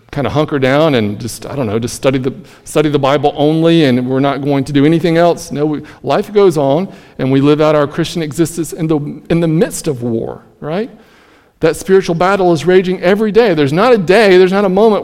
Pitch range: 135-170 Hz